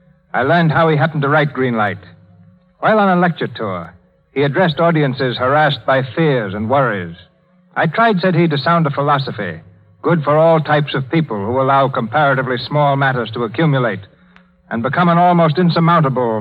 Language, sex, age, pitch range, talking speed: English, male, 60-79, 130-170 Hz, 175 wpm